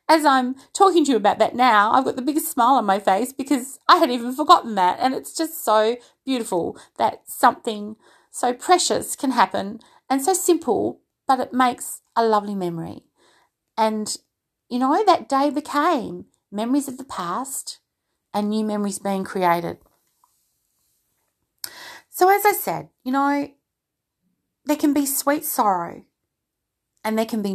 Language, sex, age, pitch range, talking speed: English, female, 30-49, 195-285 Hz, 155 wpm